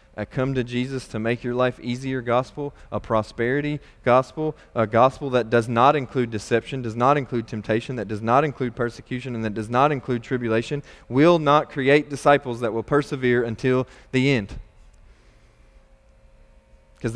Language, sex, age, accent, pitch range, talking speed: English, male, 20-39, American, 115-145 Hz, 160 wpm